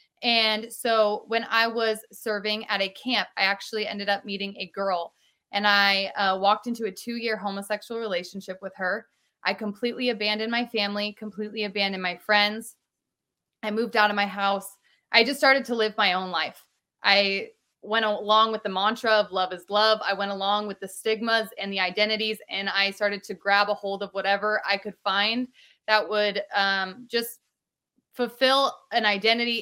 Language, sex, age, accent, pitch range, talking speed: English, female, 20-39, American, 200-225 Hz, 180 wpm